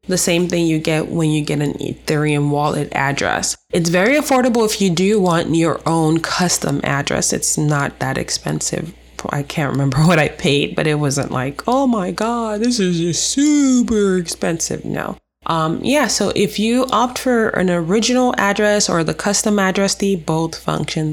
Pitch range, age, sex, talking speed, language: 155-195 Hz, 20-39, female, 175 wpm, English